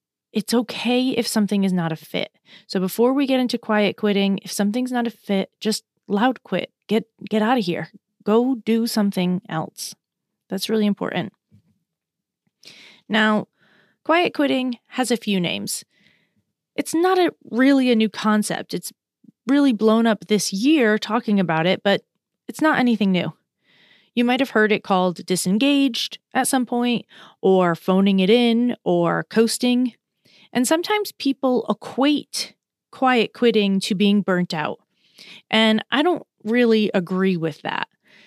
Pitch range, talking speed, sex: 190-240 Hz, 150 wpm, female